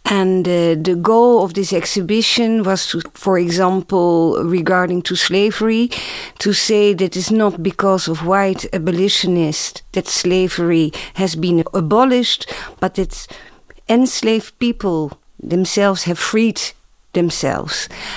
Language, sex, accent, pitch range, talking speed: English, female, Dutch, 180-220 Hz, 115 wpm